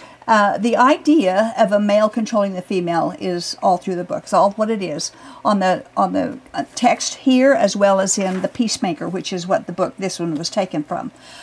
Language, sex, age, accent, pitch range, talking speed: English, female, 50-69, American, 195-265 Hz, 215 wpm